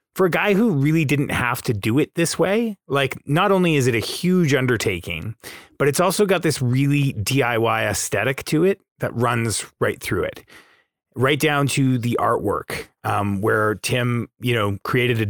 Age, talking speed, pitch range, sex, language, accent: 30-49, 185 wpm, 110-140 Hz, male, English, American